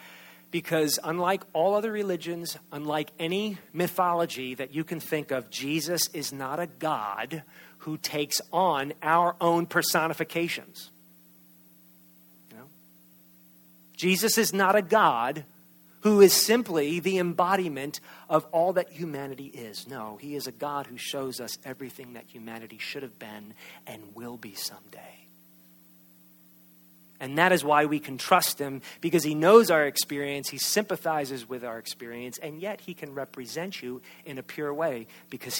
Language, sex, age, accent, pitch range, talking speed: English, male, 40-59, American, 115-170 Hz, 150 wpm